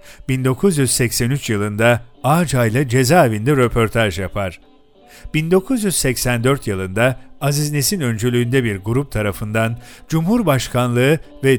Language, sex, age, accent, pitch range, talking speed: Turkish, male, 50-69, native, 120-150 Hz, 90 wpm